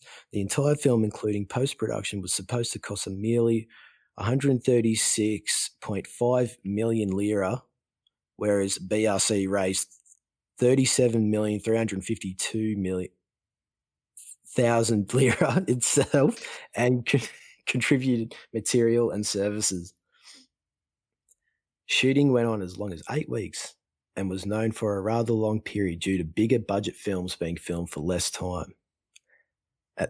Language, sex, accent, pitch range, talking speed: English, male, Australian, 95-115 Hz, 105 wpm